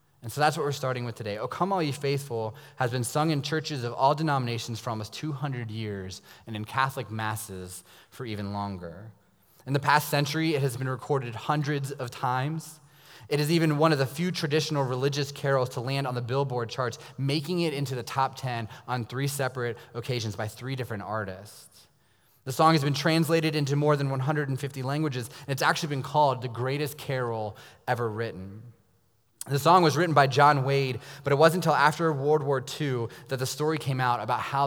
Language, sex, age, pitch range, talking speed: English, male, 20-39, 120-150 Hz, 200 wpm